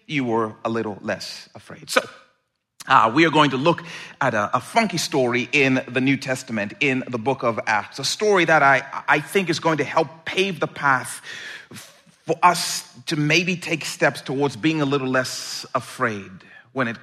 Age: 40-59